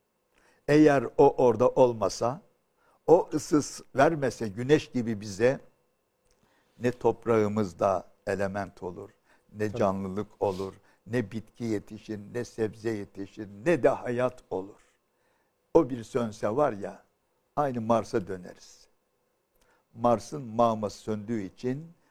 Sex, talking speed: male, 105 wpm